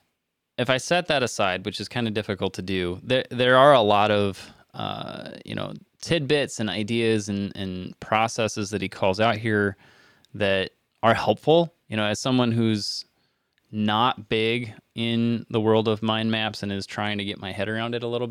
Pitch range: 105-115 Hz